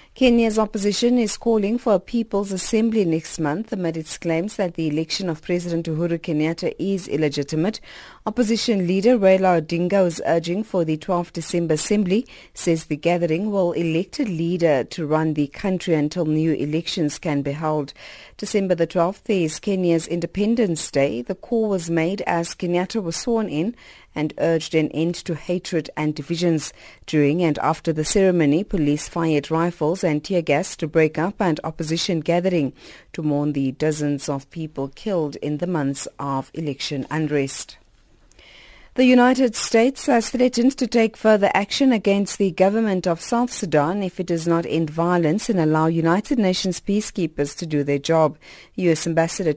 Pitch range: 160-200 Hz